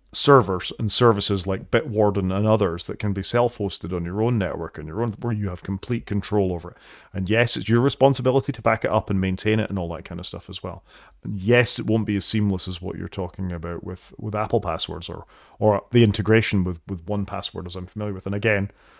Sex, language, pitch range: male, English, 95-110 Hz